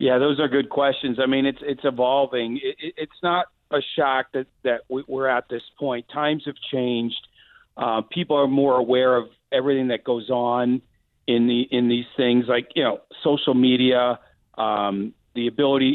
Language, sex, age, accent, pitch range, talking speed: English, male, 40-59, American, 120-150 Hz, 175 wpm